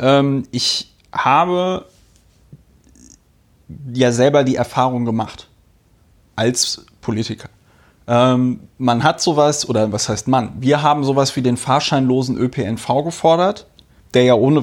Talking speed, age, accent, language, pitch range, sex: 110 wpm, 30-49, German, German, 125-150 Hz, male